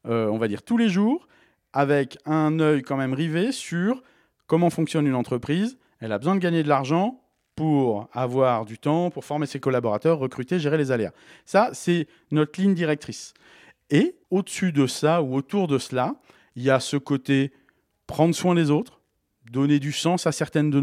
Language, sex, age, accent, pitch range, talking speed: French, male, 40-59, French, 125-160 Hz, 185 wpm